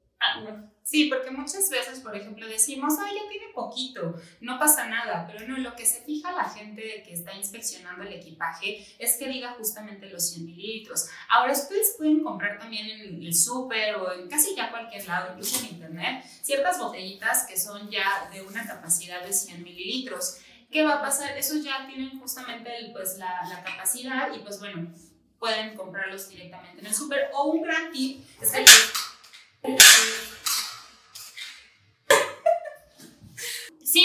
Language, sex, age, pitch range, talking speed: Spanish, female, 20-39, 205-295 Hz, 170 wpm